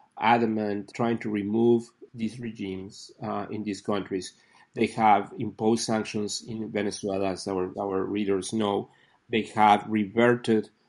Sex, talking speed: male, 130 wpm